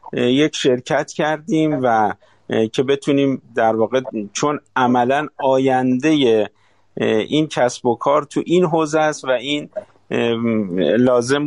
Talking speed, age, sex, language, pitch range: 115 wpm, 50-69, male, Persian, 125-155 Hz